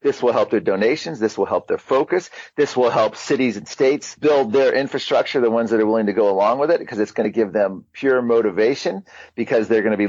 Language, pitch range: English, 110-130 Hz